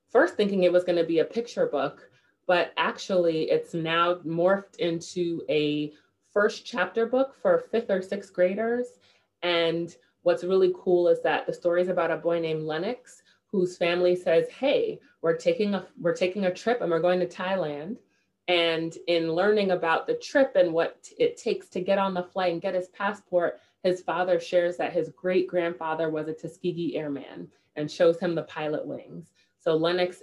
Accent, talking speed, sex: American, 185 wpm, female